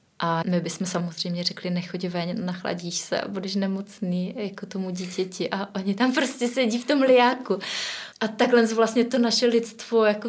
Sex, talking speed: female, 175 wpm